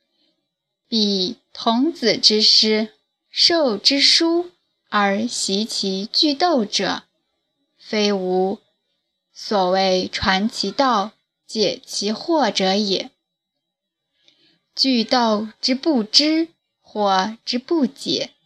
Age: 10-29